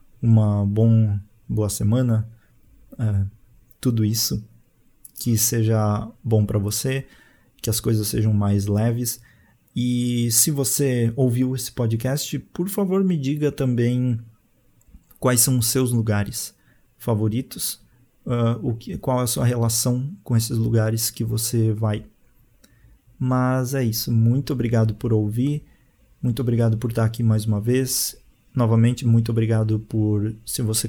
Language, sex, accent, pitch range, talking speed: Portuguese, male, Brazilian, 110-130 Hz, 125 wpm